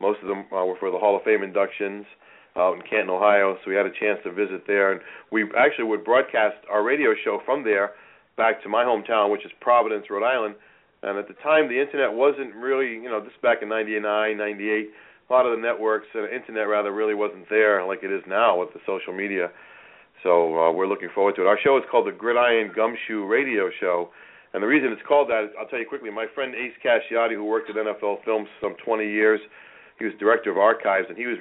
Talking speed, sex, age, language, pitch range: 235 wpm, male, 40-59, English, 100-110 Hz